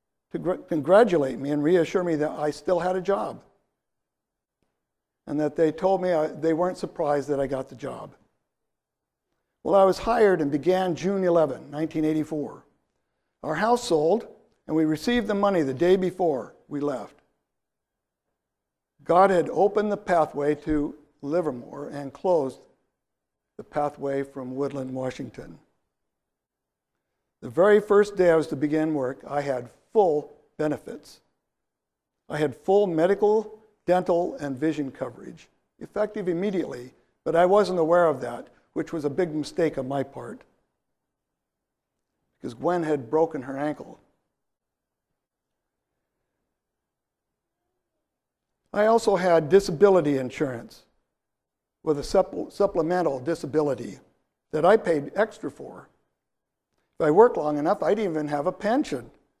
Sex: male